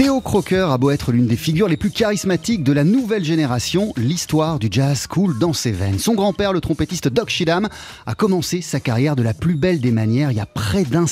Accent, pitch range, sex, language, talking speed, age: French, 125-185 Hz, male, French, 230 wpm, 30-49